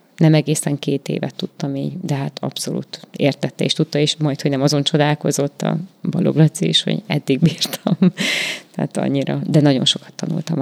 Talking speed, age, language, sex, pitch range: 170 wpm, 20-39, Hungarian, female, 150-180 Hz